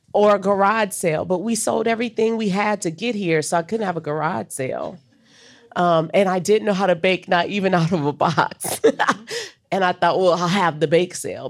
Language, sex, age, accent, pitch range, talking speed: English, female, 40-59, American, 145-185 Hz, 225 wpm